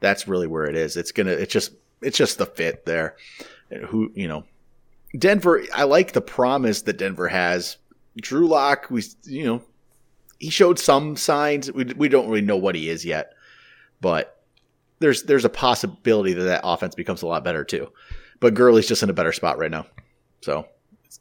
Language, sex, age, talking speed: English, male, 30-49, 190 wpm